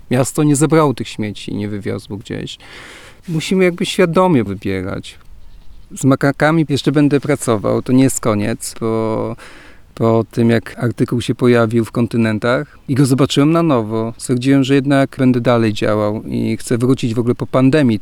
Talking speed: 165 wpm